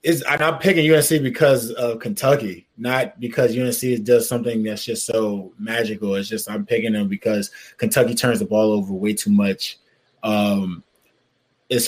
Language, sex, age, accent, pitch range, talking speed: English, male, 20-39, American, 115-140 Hz, 160 wpm